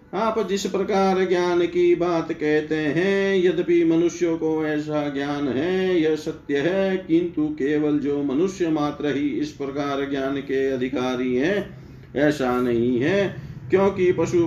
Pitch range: 145-180 Hz